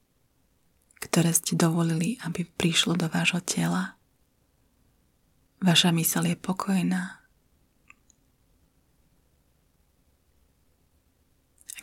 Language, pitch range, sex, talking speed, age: Slovak, 130-190 Hz, female, 65 wpm, 20-39